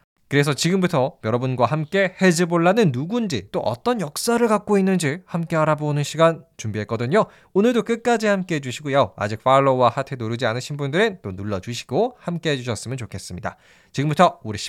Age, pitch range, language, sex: 20-39, 125-190 Hz, Korean, male